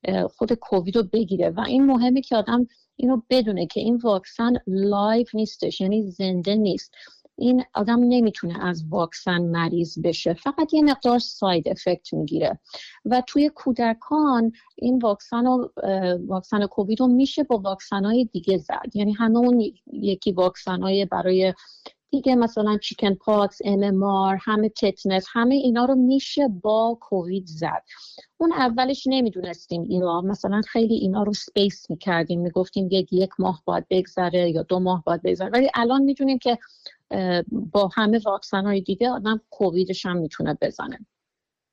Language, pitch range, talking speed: Persian, 190-245 Hz, 140 wpm